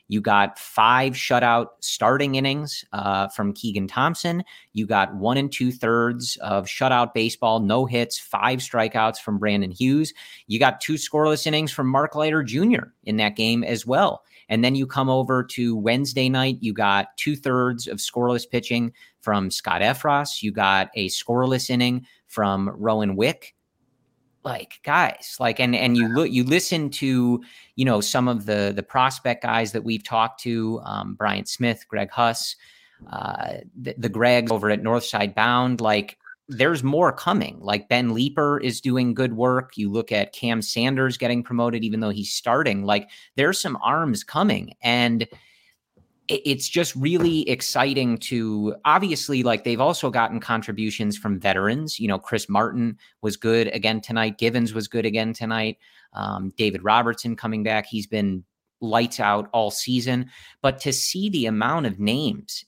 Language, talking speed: English, 165 wpm